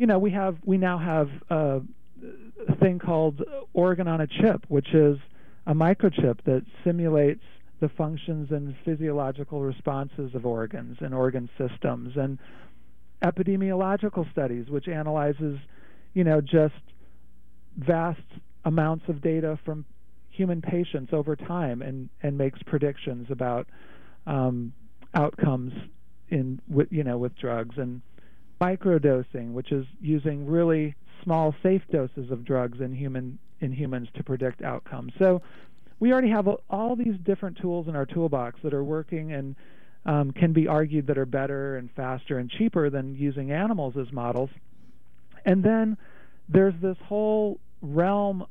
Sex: male